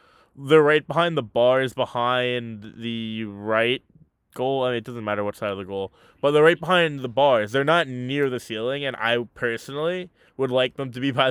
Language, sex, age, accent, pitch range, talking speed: English, male, 20-39, American, 115-140 Hz, 205 wpm